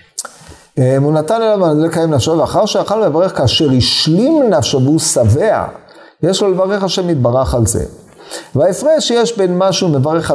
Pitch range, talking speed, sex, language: 120-165 Hz, 145 wpm, male, Hebrew